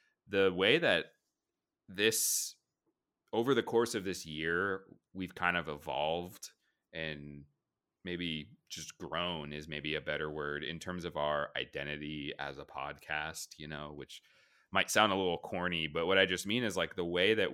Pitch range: 80-115 Hz